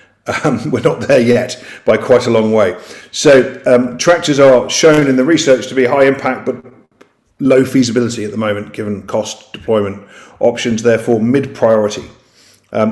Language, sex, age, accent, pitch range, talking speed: English, male, 40-59, British, 110-130 Hz, 165 wpm